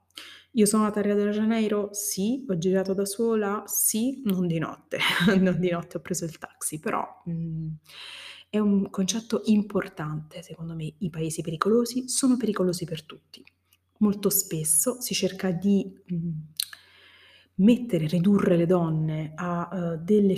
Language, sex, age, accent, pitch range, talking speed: Italian, female, 30-49, native, 175-215 Hz, 140 wpm